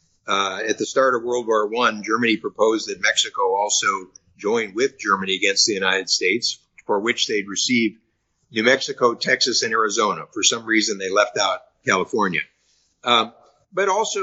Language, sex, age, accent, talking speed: English, male, 50-69, American, 165 wpm